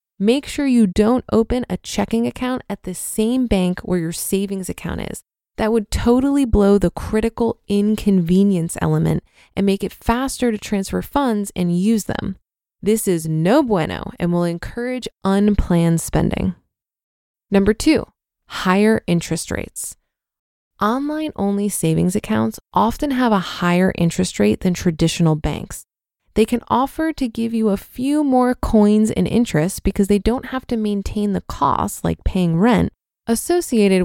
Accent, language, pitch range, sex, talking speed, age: American, English, 175-240 Hz, female, 150 wpm, 20-39